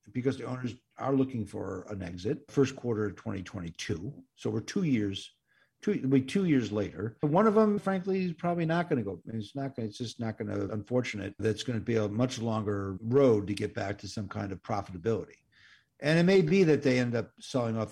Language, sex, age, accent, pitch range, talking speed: English, male, 50-69, American, 110-145 Hz, 220 wpm